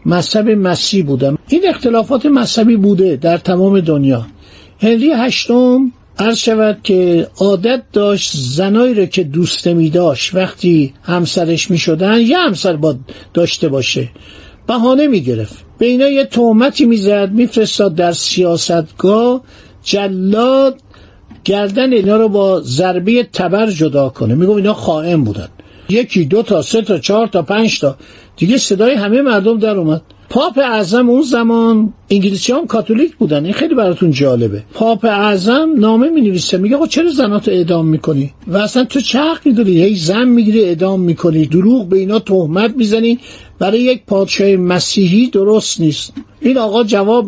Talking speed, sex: 150 wpm, male